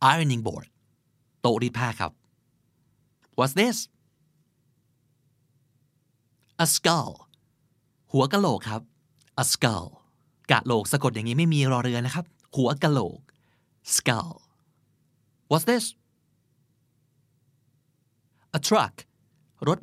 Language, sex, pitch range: Thai, male, 125-150 Hz